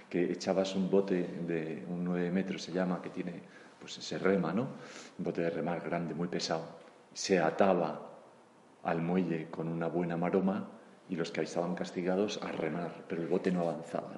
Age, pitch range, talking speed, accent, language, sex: 40-59, 85-105 Hz, 185 wpm, Spanish, Spanish, male